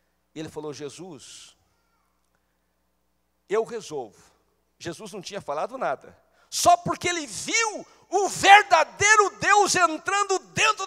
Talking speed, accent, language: 110 wpm, Brazilian, Portuguese